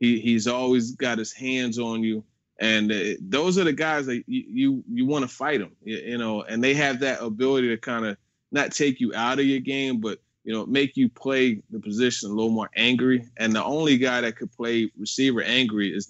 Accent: American